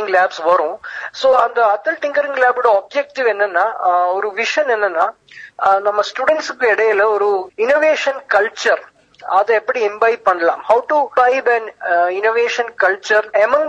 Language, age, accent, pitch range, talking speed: Tamil, 20-39, native, 200-245 Hz, 110 wpm